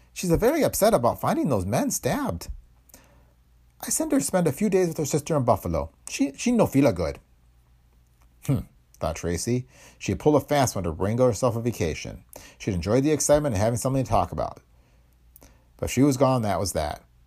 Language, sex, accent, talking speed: English, male, American, 205 wpm